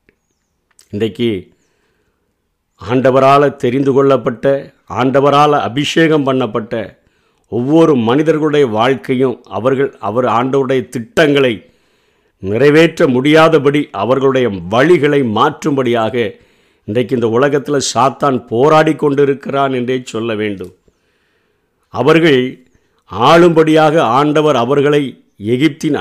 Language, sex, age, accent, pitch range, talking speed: Tamil, male, 50-69, native, 125-155 Hz, 75 wpm